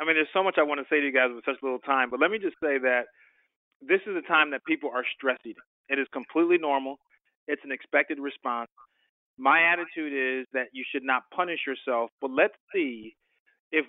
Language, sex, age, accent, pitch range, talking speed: English, male, 30-49, American, 130-170 Hz, 220 wpm